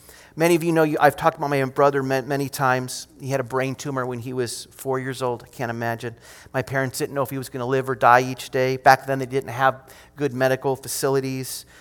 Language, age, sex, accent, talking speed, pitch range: English, 30-49, male, American, 245 wpm, 130-185 Hz